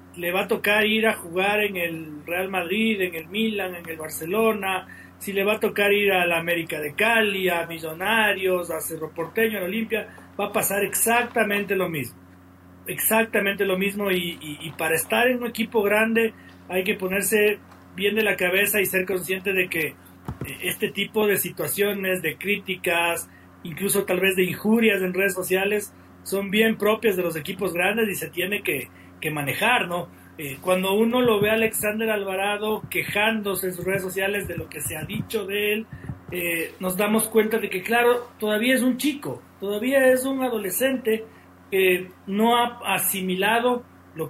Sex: male